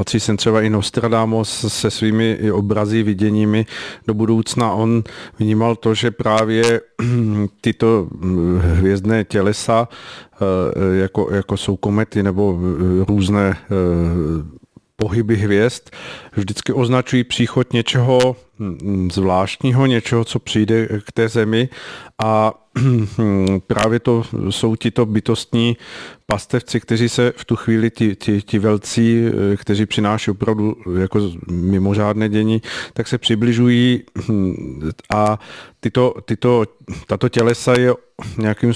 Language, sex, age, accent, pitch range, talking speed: Czech, male, 40-59, native, 105-120 Hz, 110 wpm